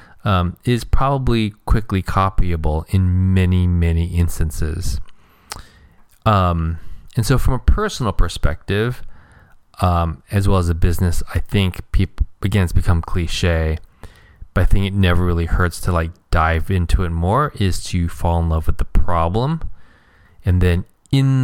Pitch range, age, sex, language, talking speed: 85-100 Hz, 20-39, male, English, 150 wpm